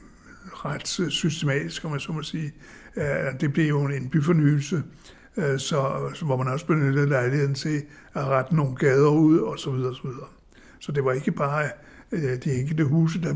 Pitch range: 135-165 Hz